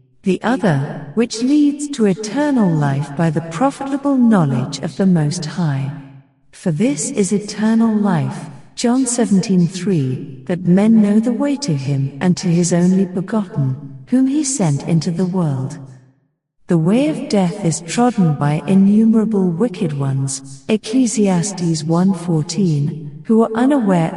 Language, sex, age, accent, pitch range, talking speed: English, female, 50-69, British, 155-215 Hz, 140 wpm